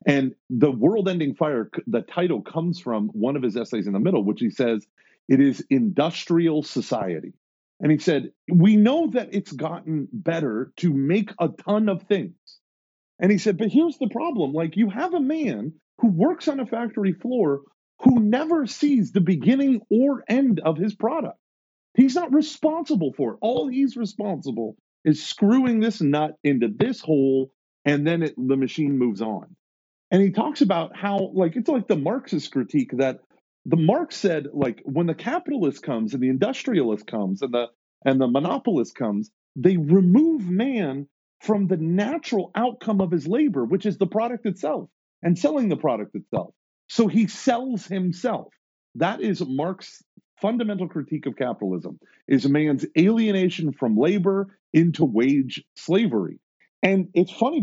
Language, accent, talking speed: English, American, 165 wpm